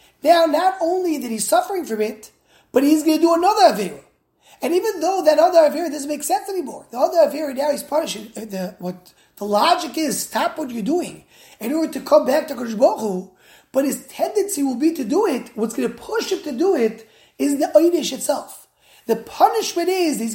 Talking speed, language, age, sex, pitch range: 210 wpm, English, 30-49, male, 220-315 Hz